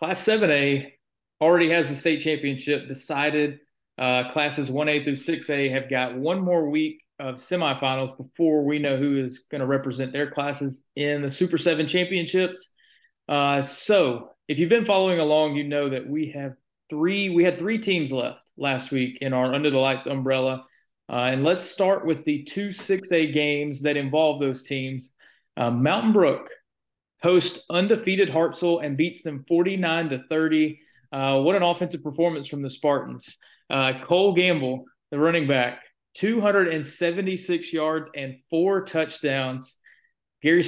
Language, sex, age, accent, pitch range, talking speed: English, male, 30-49, American, 135-170 Hz, 155 wpm